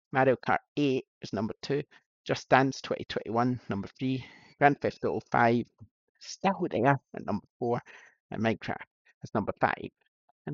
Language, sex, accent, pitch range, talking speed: English, male, British, 105-135 Hz, 155 wpm